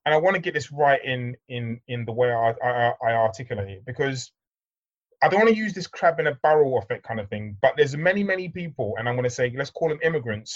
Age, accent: 30-49, British